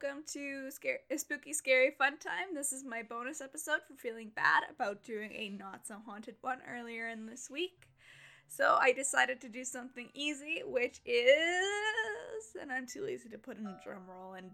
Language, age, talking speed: English, 10-29, 190 wpm